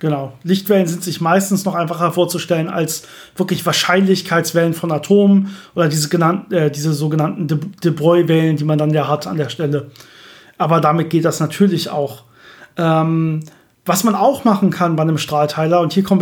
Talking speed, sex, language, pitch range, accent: 175 wpm, male, German, 165-205 Hz, German